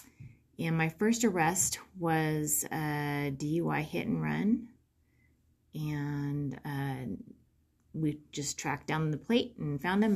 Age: 30-49